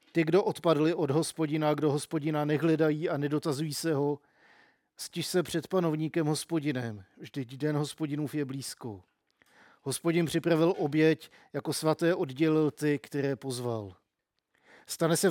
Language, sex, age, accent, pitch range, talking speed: Czech, male, 50-69, native, 145-160 Hz, 130 wpm